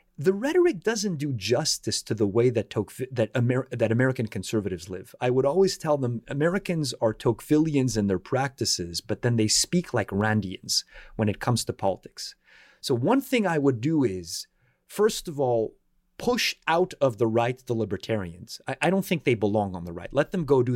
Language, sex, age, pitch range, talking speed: English, male, 30-49, 115-185 Hz, 190 wpm